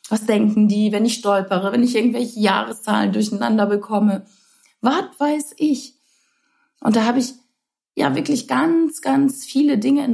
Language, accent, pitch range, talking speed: German, German, 200-265 Hz, 155 wpm